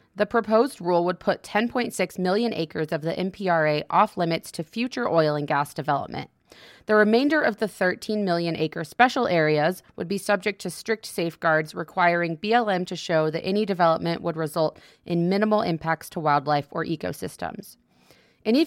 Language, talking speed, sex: English, 165 wpm, female